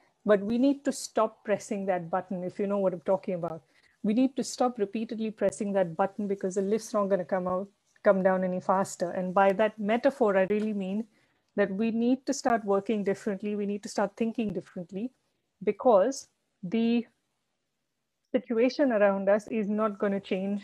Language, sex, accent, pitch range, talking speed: English, female, Indian, 195-225 Hz, 185 wpm